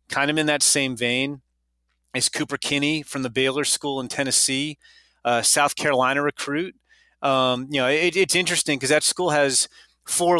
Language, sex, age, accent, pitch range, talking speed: English, male, 30-49, American, 130-155 Hz, 175 wpm